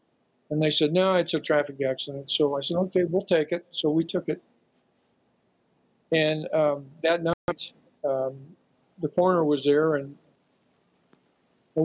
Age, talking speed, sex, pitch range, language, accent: 50-69, 150 wpm, male, 140-165 Hz, English, American